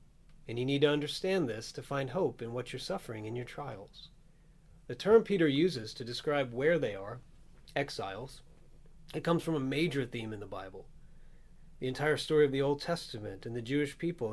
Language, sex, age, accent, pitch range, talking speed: English, male, 40-59, American, 125-160 Hz, 195 wpm